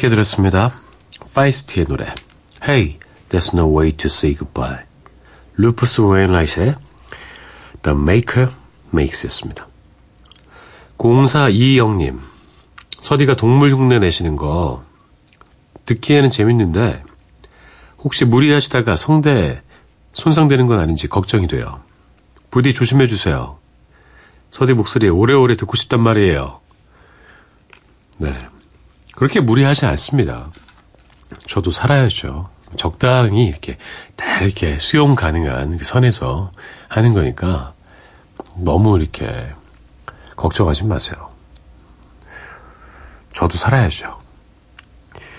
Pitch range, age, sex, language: 80-130 Hz, 40-59, male, Korean